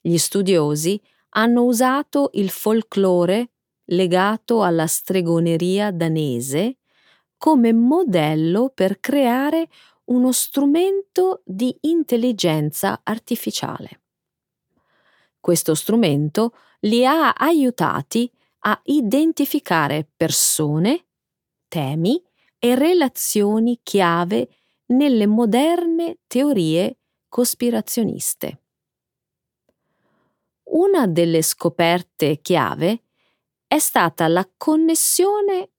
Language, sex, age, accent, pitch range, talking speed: Italian, female, 30-49, native, 165-255 Hz, 70 wpm